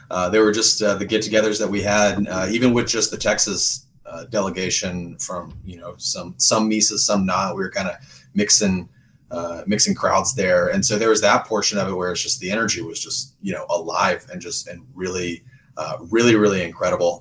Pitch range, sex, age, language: 95-125 Hz, male, 30-49, English